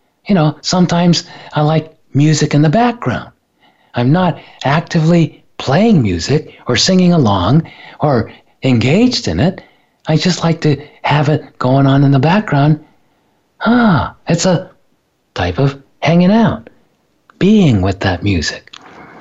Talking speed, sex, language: 135 wpm, male, English